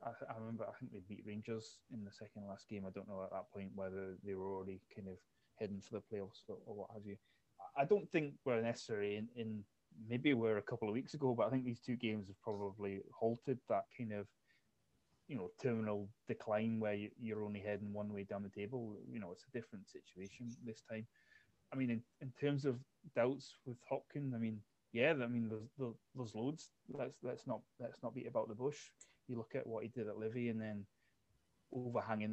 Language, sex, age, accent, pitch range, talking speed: English, male, 20-39, British, 100-115 Hz, 220 wpm